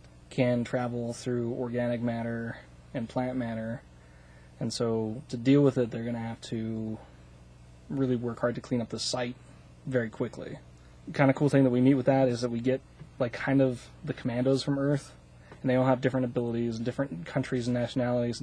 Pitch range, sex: 115-135 Hz, male